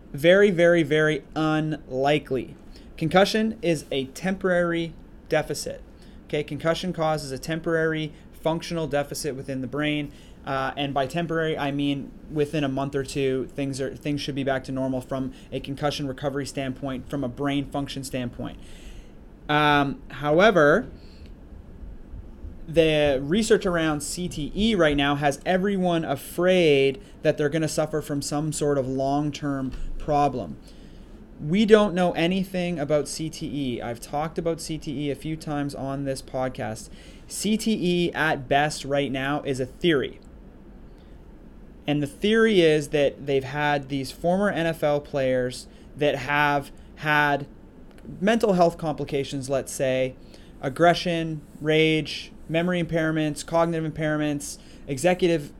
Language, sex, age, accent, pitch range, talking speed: English, male, 30-49, American, 135-165 Hz, 130 wpm